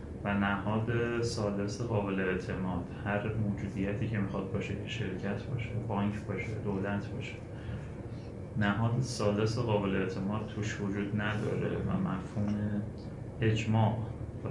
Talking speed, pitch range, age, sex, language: 110 wpm, 100-120 Hz, 30-49, male, Persian